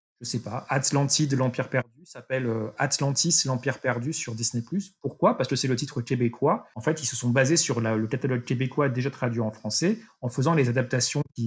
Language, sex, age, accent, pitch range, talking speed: French, male, 30-49, French, 120-155 Hz, 220 wpm